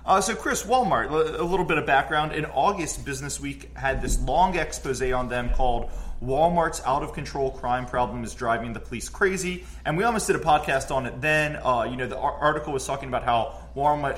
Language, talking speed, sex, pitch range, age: English, 205 wpm, male, 120-150 Hz, 30-49